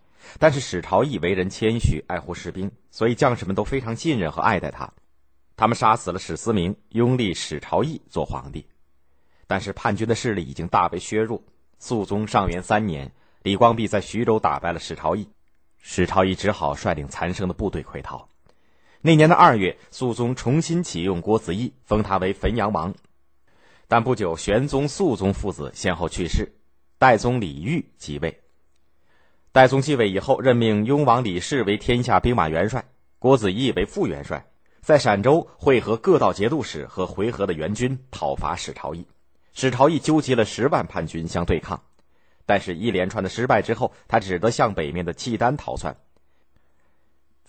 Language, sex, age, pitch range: Chinese, male, 30-49, 80-115 Hz